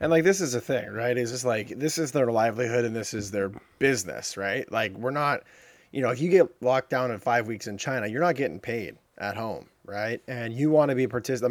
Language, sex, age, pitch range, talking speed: English, male, 30-49, 105-125 Hz, 255 wpm